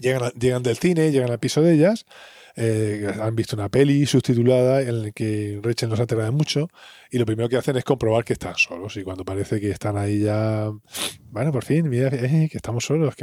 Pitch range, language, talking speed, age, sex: 110-145 Hz, Spanish, 220 wpm, 20-39, male